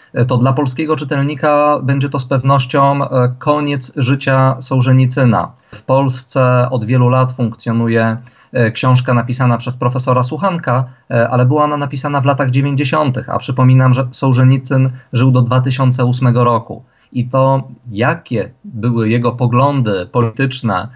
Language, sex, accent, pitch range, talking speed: Polish, male, native, 120-140 Hz, 125 wpm